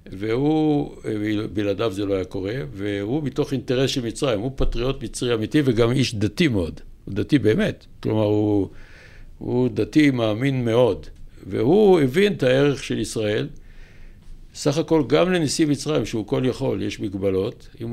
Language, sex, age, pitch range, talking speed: Hebrew, male, 60-79, 105-140 Hz, 150 wpm